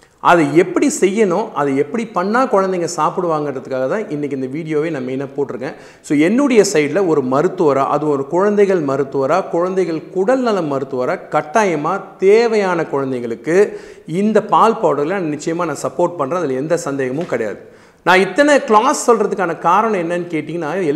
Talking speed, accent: 135 wpm, native